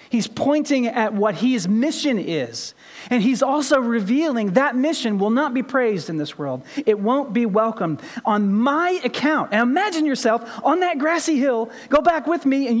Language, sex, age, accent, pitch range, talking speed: English, male, 40-59, American, 215-295 Hz, 185 wpm